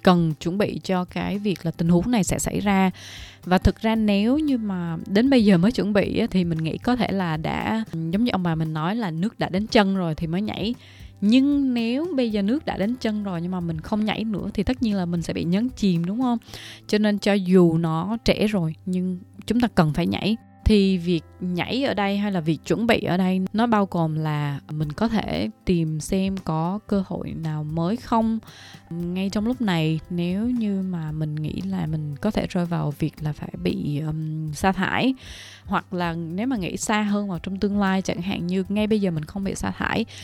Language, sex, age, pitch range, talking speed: Vietnamese, female, 20-39, 170-215 Hz, 235 wpm